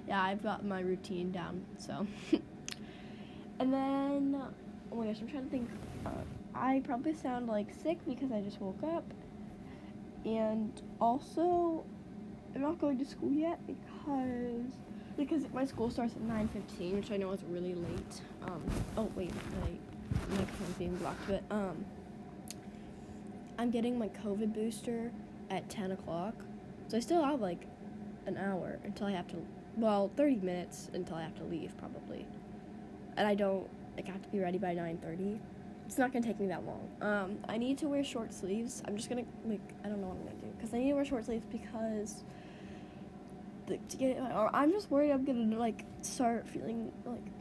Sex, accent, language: female, American, English